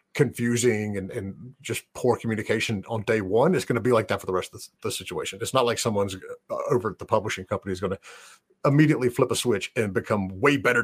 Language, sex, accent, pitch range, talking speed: English, male, American, 105-140 Hz, 235 wpm